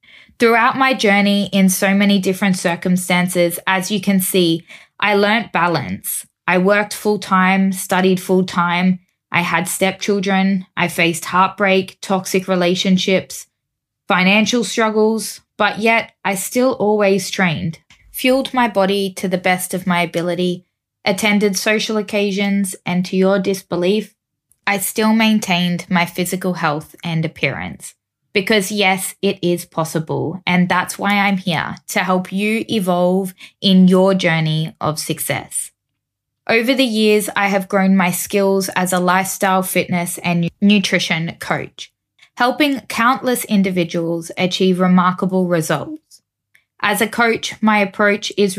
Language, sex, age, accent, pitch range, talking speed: English, female, 20-39, Australian, 175-205 Hz, 130 wpm